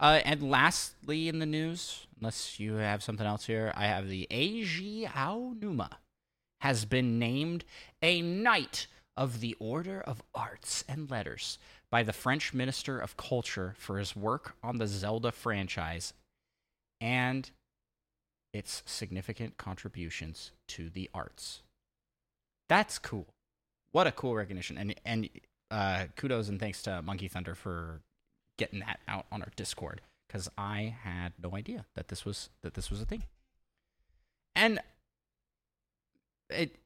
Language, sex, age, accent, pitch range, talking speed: English, male, 30-49, American, 100-135 Hz, 140 wpm